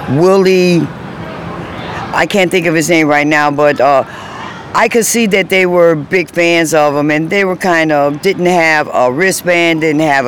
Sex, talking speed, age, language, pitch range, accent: female, 185 wpm, 60-79, English, 160-190 Hz, American